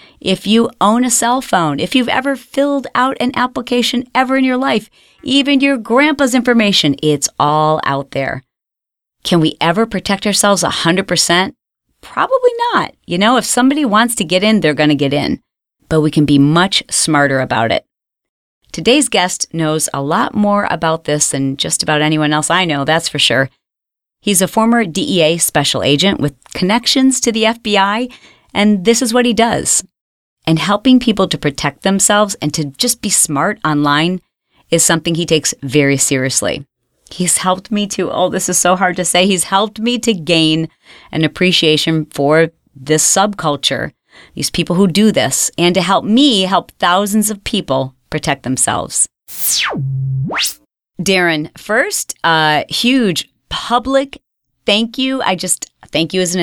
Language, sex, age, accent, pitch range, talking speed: English, female, 40-59, American, 155-225 Hz, 165 wpm